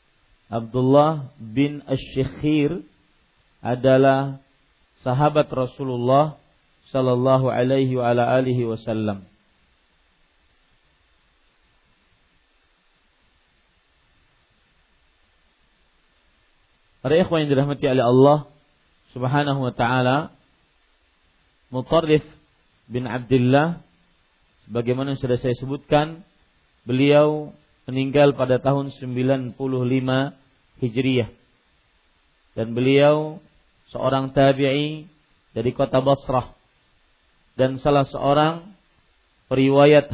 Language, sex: Malay, male